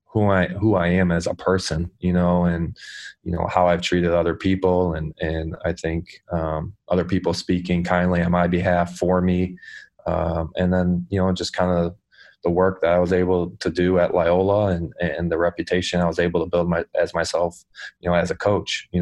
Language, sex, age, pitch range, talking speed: English, male, 20-39, 85-90 Hz, 215 wpm